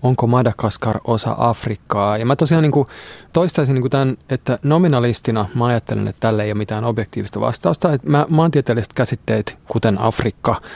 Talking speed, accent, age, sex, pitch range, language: 155 wpm, native, 30-49, male, 110-135 Hz, Finnish